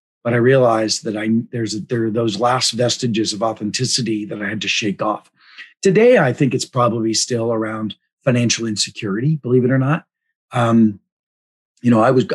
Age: 50-69